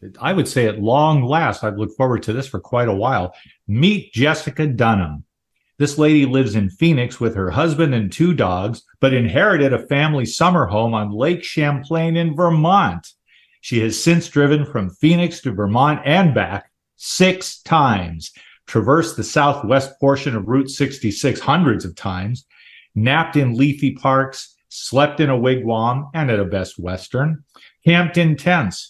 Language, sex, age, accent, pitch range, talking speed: English, male, 40-59, American, 110-150 Hz, 160 wpm